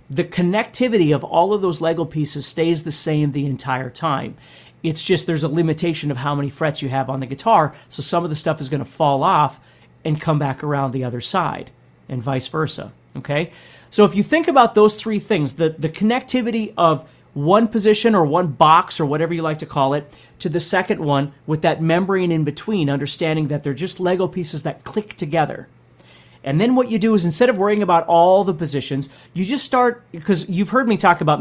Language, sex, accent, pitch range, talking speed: English, male, American, 140-185 Hz, 215 wpm